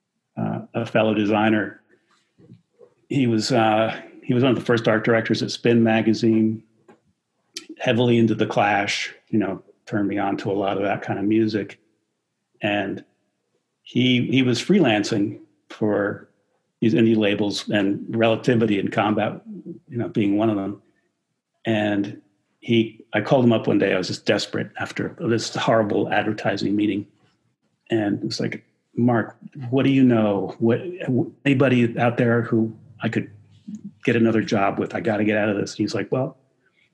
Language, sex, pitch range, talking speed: English, male, 110-125 Hz, 165 wpm